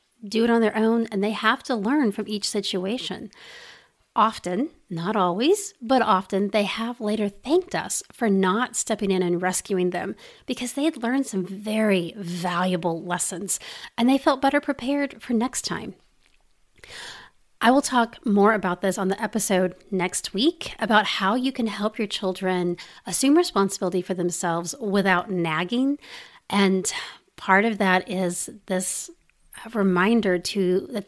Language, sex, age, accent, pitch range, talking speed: English, female, 40-59, American, 190-245 Hz, 155 wpm